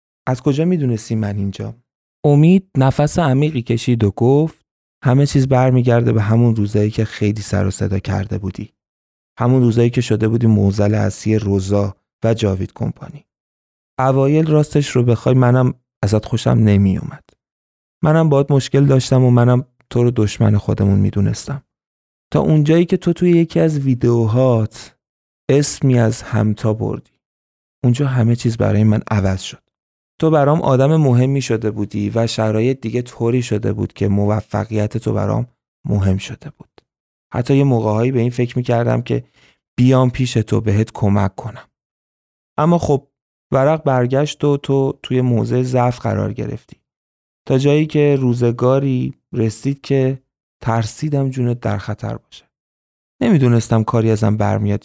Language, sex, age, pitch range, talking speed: Persian, male, 30-49, 105-130 Hz, 150 wpm